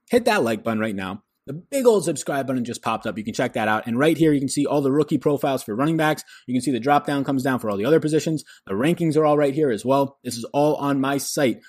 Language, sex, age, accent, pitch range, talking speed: English, male, 20-39, American, 115-145 Hz, 305 wpm